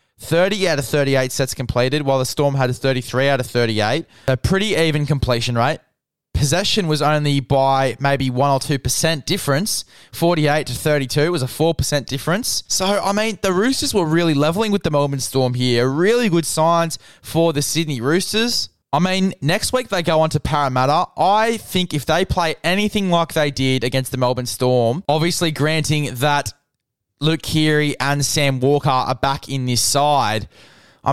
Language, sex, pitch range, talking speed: English, male, 135-165 Hz, 175 wpm